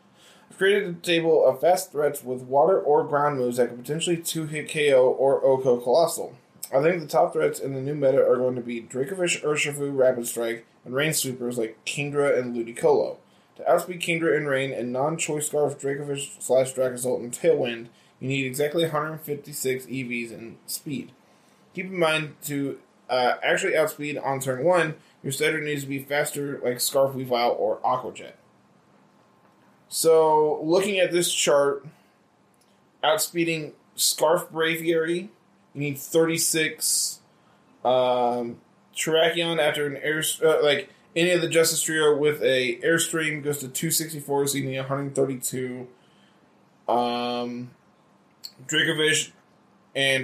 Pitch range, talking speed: 130-165 Hz, 145 wpm